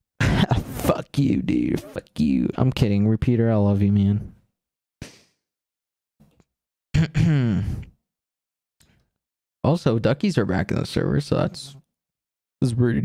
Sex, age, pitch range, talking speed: male, 20-39, 105-145 Hz, 110 wpm